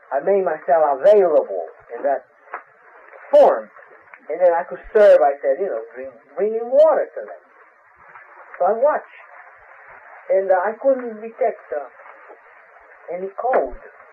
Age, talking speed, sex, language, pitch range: 50-69, 135 wpm, male, English, 170-270 Hz